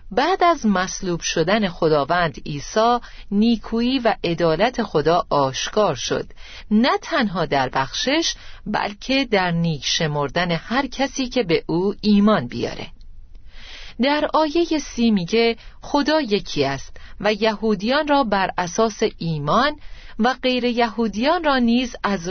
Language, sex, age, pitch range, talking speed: Persian, female, 40-59, 170-255 Hz, 125 wpm